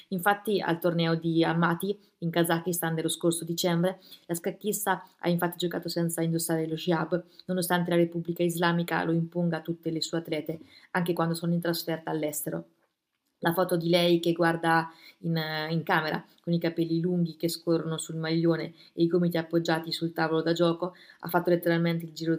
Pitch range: 160-175 Hz